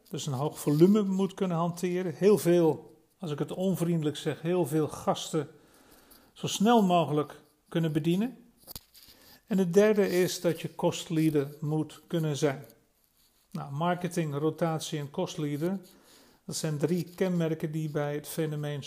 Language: Dutch